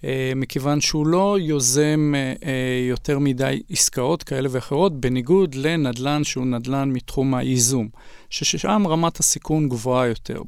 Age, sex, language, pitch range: 40-59, male, Hebrew, 125-155 Hz